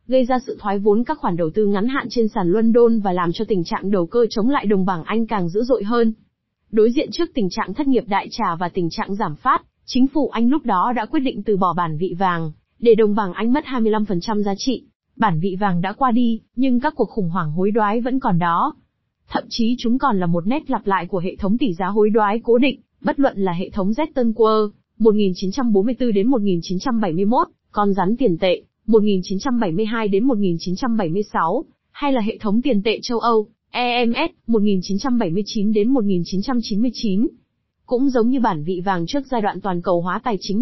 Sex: female